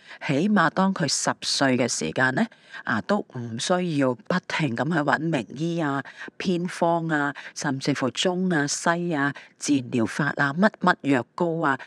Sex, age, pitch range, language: female, 40-59, 135-180 Hz, Chinese